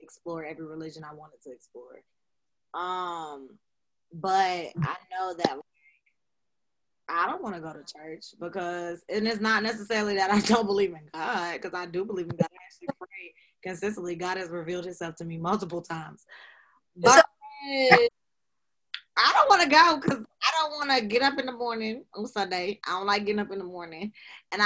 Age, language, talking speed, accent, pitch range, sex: 20-39, English, 185 wpm, American, 180-270 Hz, female